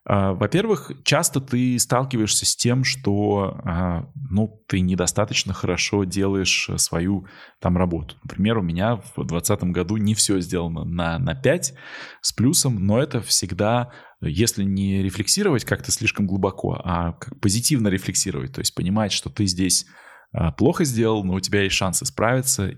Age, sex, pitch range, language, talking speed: 20-39, male, 90-115 Hz, Russian, 145 wpm